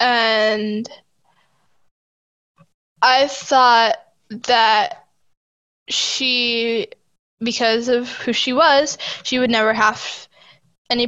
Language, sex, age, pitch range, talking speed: English, female, 10-29, 215-260 Hz, 80 wpm